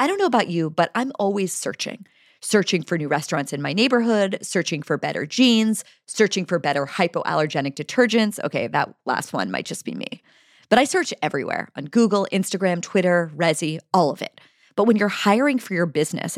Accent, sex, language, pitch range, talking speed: American, female, English, 165-215 Hz, 190 wpm